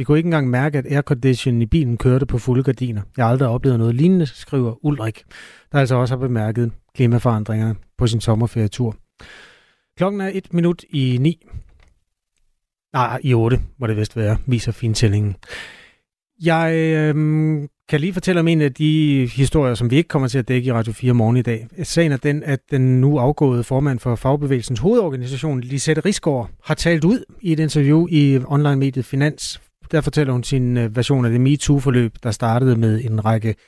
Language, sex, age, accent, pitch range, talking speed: Danish, male, 30-49, native, 120-150 Hz, 185 wpm